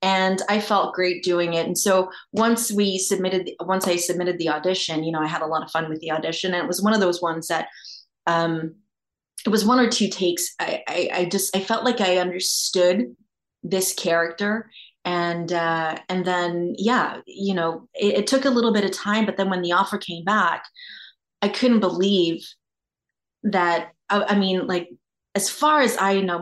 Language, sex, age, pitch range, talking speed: English, female, 30-49, 170-205 Hz, 200 wpm